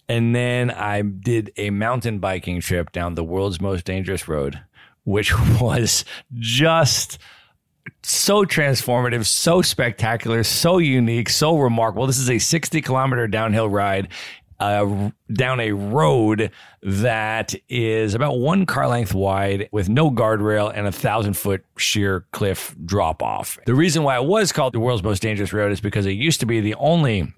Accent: American